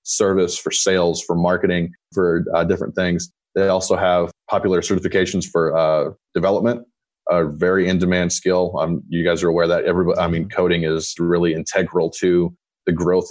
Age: 30-49